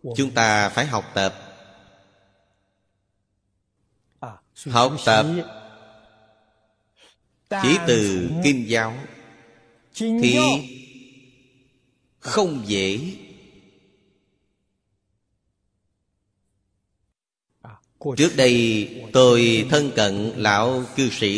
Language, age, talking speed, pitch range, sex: Vietnamese, 30-49, 60 wpm, 100-125 Hz, male